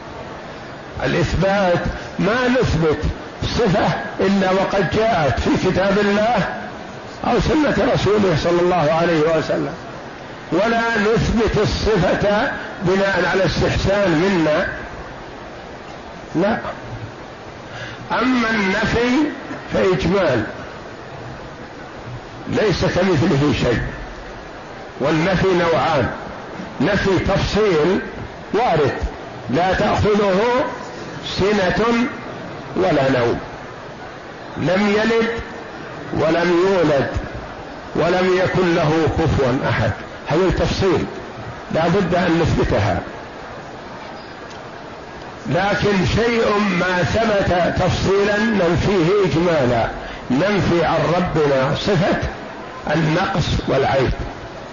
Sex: male